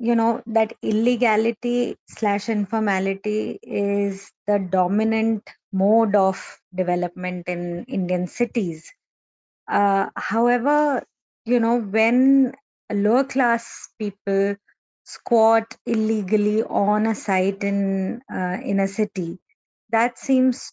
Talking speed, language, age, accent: 100 wpm, English, 20-39, Indian